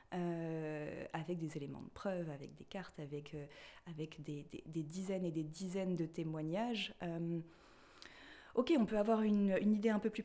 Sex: female